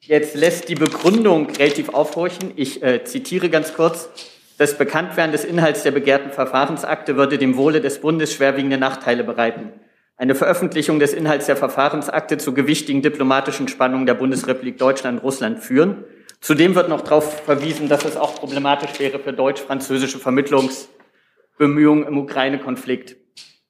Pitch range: 135-155 Hz